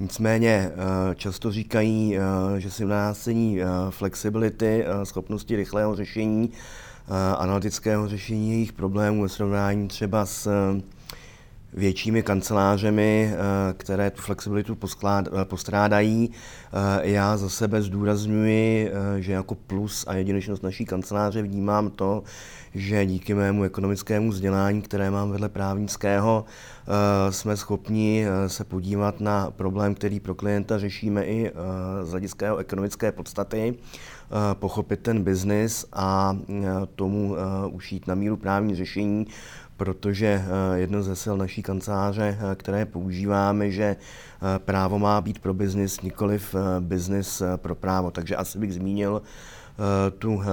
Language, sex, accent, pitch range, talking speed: Czech, male, native, 95-105 Hz, 115 wpm